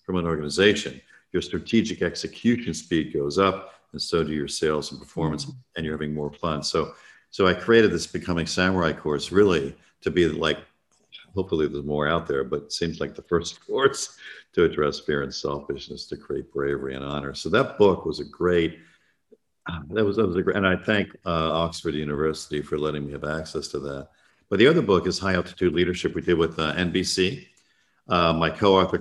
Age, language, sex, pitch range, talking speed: 50-69, English, male, 75-85 Hz, 200 wpm